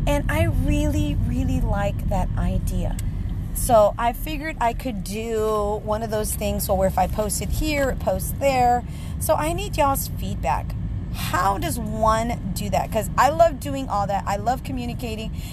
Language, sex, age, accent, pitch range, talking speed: English, female, 30-49, American, 180-275 Hz, 175 wpm